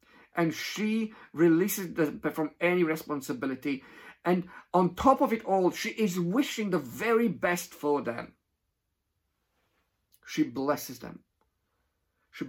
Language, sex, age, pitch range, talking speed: English, male, 50-69, 150-225 Hz, 120 wpm